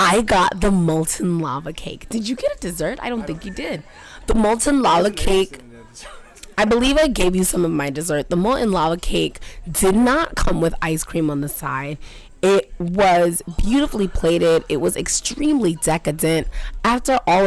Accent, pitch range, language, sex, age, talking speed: American, 160-205 Hz, English, female, 20-39, 180 wpm